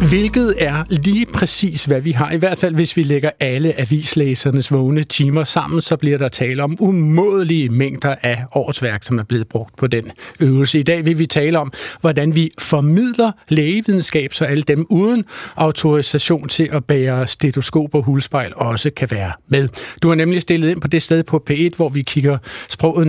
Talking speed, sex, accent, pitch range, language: 190 wpm, male, native, 140-175 Hz, Danish